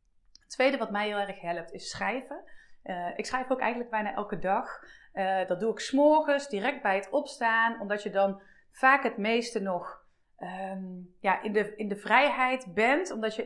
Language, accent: Dutch, Dutch